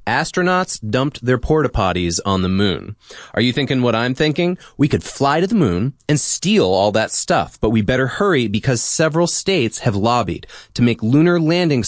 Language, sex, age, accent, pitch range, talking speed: English, male, 30-49, American, 100-155 Hz, 190 wpm